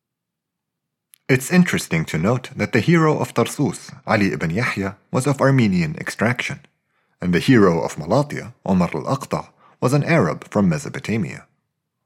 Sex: male